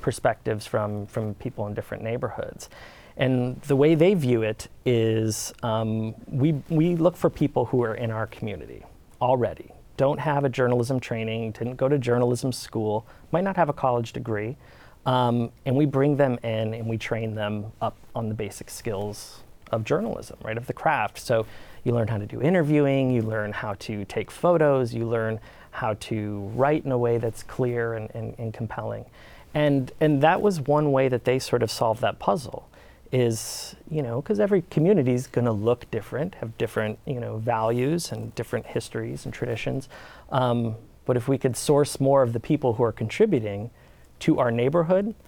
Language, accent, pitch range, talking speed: English, American, 110-135 Hz, 185 wpm